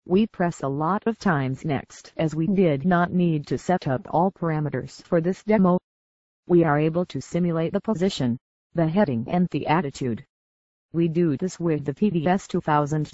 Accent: American